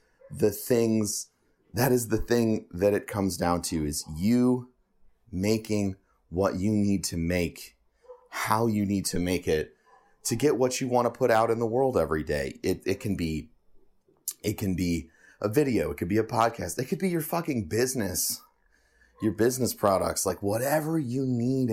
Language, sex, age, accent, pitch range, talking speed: English, male, 30-49, American, 90-115 Hz, 180 wpm